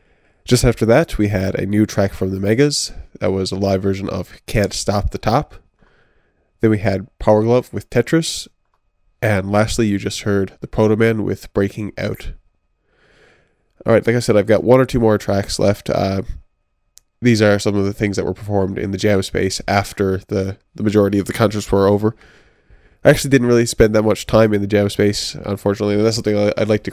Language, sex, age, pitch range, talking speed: English, male, 20-39, 100-110 Hz, 205 wpm